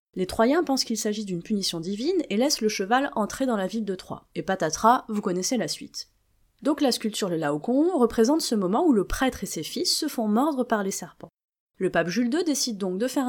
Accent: French